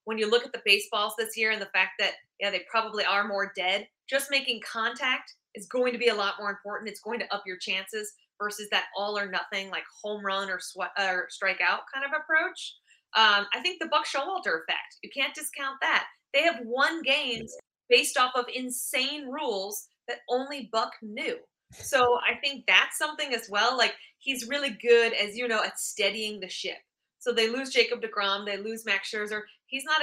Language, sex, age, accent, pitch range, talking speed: English, female, 20-39, American, 205-250 Hz, 205 wpm